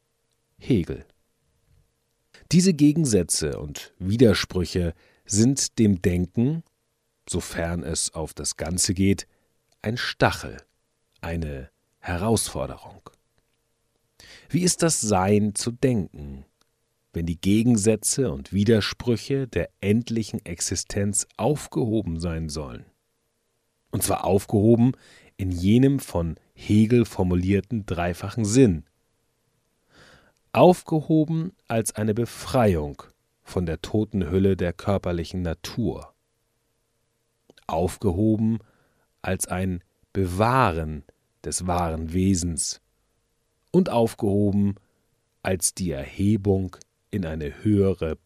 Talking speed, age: 85 wpm, 40-59